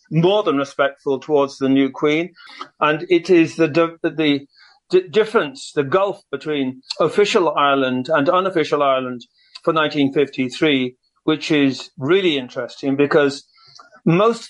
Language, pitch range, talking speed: English, 140-180 Hz, 130 wpm